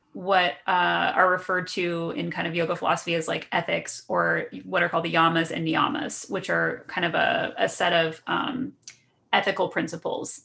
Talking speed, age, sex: 185 wpm, 30-49, female